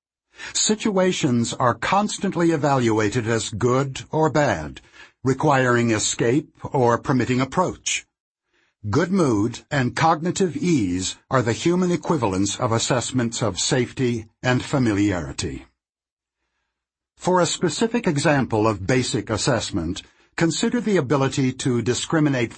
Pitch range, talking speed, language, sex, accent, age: 115-165 Hz, 105 wpm, English, male, American, 60-79